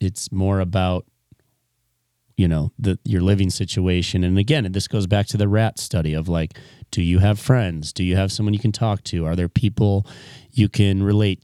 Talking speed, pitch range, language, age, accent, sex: 200 wpm, 90-110 Hz, English, 30-49, American, male